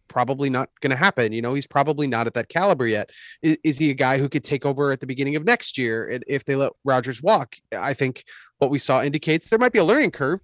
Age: 30-49